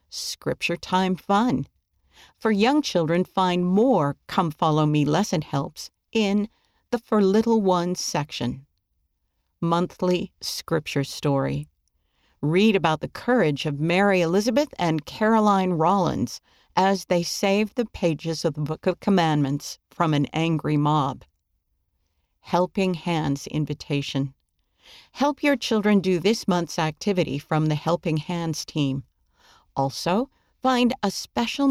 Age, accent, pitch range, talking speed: 50-69, American, 145-200 Hz, 125 wpm